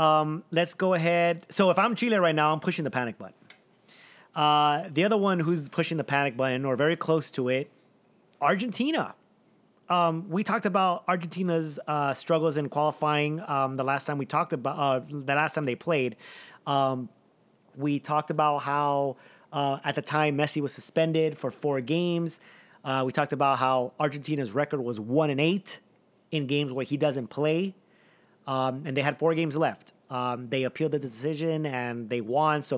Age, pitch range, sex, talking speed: 30-49, 140-165 Hz, male, 185 wpm